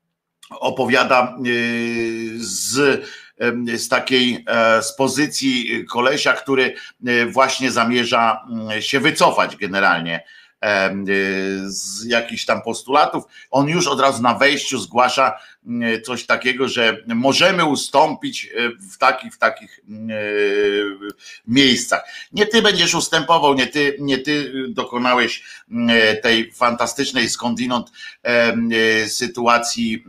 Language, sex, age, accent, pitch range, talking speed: Polish, male, 50-69, native, 110-135 Hz, 95 wpm